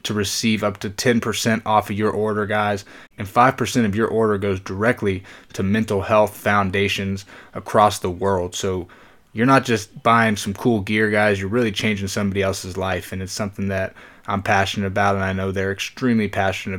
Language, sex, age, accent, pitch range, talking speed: English, male, 20-39, American, 100-110 Hz, 185 wpm